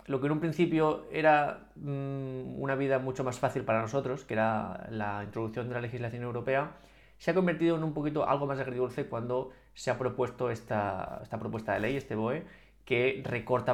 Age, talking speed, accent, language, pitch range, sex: 20-39, 190 wpm, Spanish, Spanish, 120-145 Hz, male